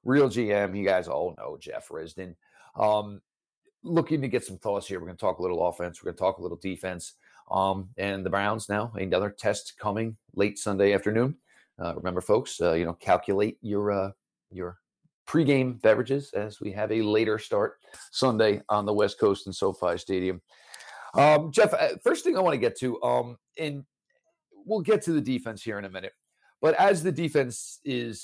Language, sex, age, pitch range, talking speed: English, male, 50-69, 100-145 Hz, 195 wpm